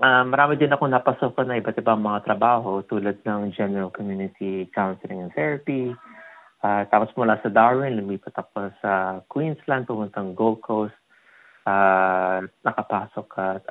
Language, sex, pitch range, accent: Filipino, male, 100-135 Hz, native